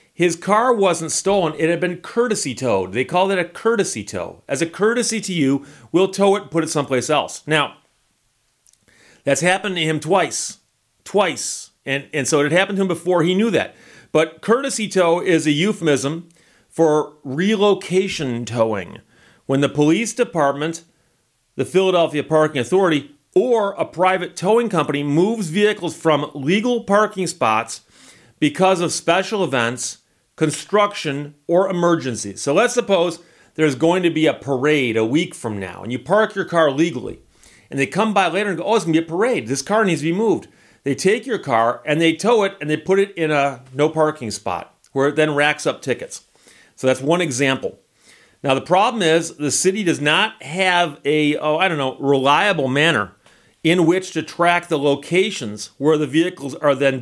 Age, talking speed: 40-59, 185 wpm